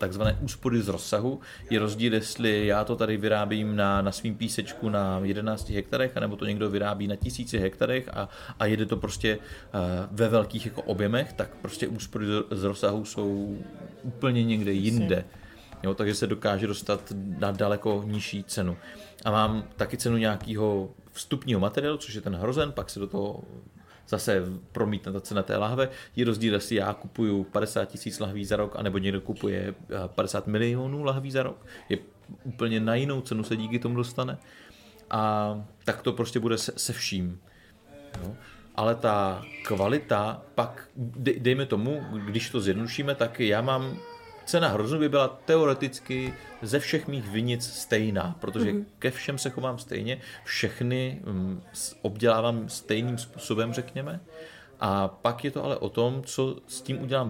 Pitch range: 100-125 Hz